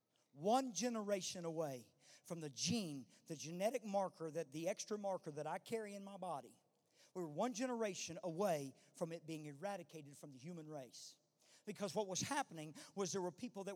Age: 50-69